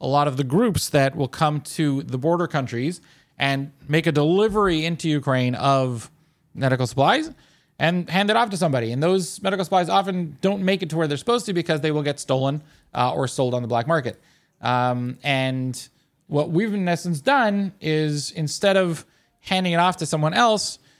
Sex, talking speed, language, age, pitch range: male, 195 wpm, English, 30-49, 135-175 Hz